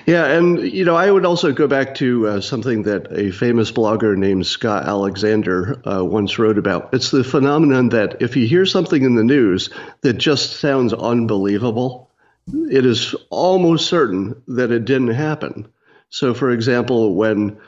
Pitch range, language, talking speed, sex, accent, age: 100-140 Hz, English, 170 wpm, male, American, 50-69